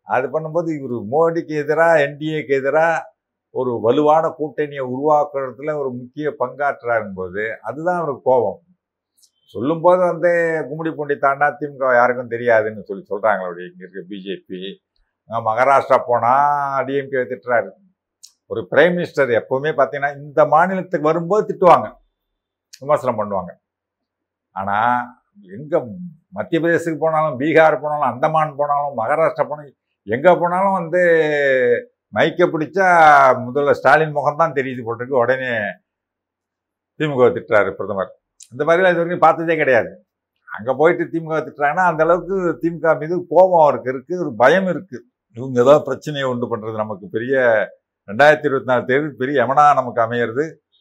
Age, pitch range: 50-69, 130-165 Hz